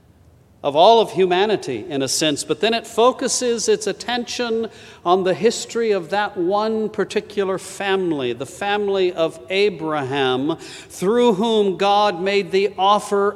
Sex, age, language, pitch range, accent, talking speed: male, 50-69, English, 130-185 Hz, American, 140 wpm